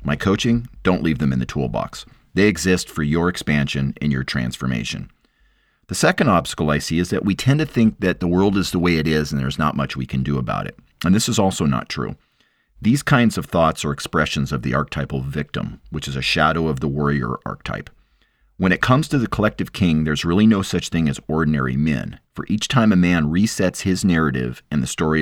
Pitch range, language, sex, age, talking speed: 70-95 Hz, English, male, 40-59, 225 wpm